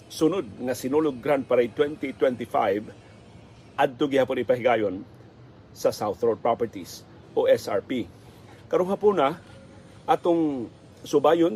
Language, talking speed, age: Filipino, 105 wpm, 40-59